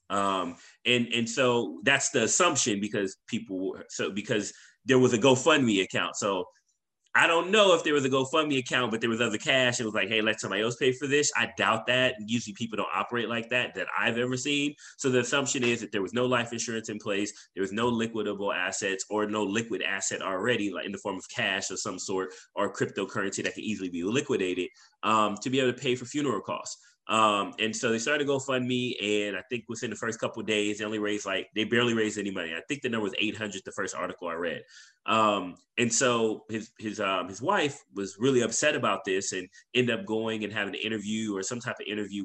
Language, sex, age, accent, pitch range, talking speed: English, male, 20-39, American, 105-125 Hz, 230 wpm